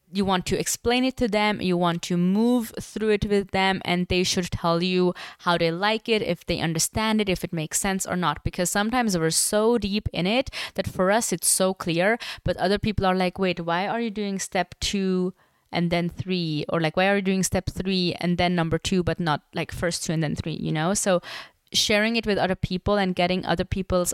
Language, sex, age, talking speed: English, female, 20-39, 235 wpm